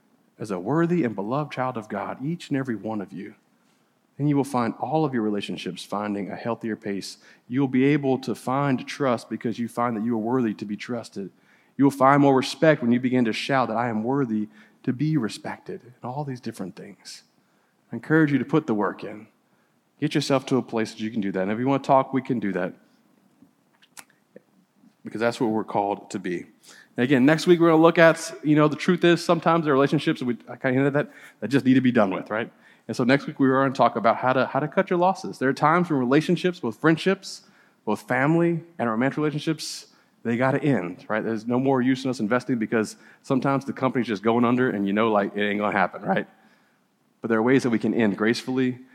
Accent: American